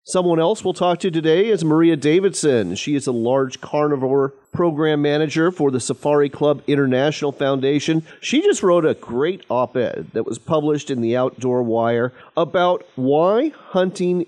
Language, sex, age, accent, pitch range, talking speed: English, male, 40-59, American, 125-170 Hz, 165 wpm